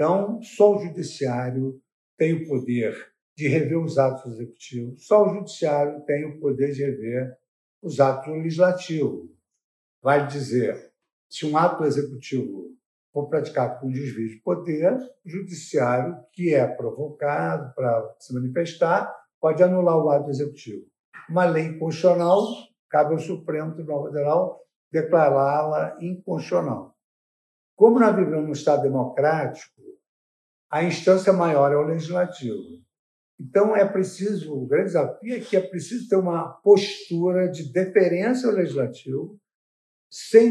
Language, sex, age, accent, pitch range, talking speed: Portuguese, male, 60-79, Brazilian, 145-195 Hz, 135 wpm